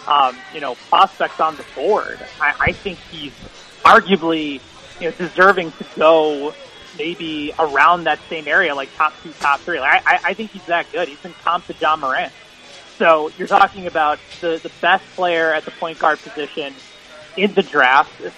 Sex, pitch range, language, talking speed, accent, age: male, 155-200 Hz, English, 185 wpm, American, 20-39